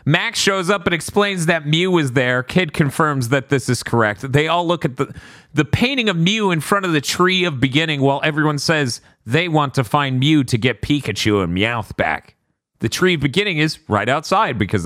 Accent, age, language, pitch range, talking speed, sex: American, 30-49, English, 125-175 Hz, 215 wpm, male